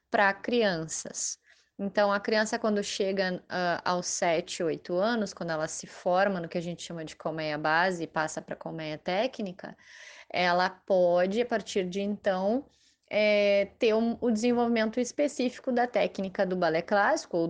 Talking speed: 160 wpm